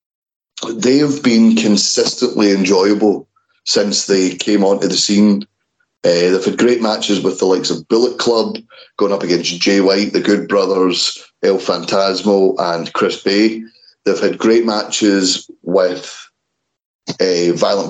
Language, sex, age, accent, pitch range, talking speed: English, male, 30-49, British, 100-115 Hz, 140 wpm